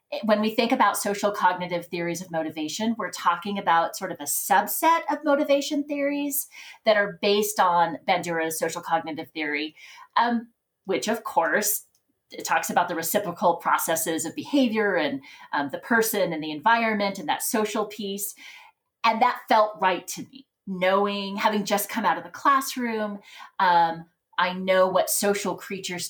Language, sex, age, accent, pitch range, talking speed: English, female, 30-49, American, 165-240 Hz, 160 wpm